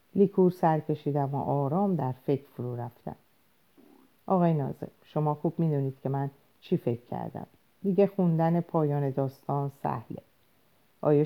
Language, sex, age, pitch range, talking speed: Persian, female, 50-69, 135-165 Hz, 140 wpm